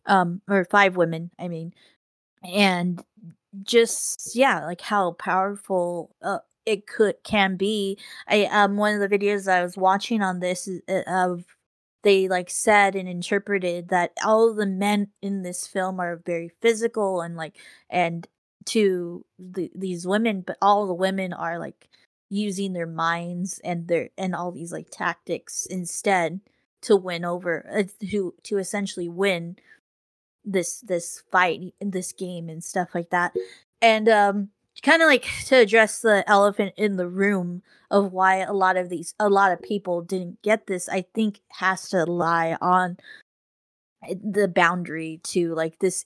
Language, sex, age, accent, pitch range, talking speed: English, female, 20-39, American, 175-205 Hz, 160 wpm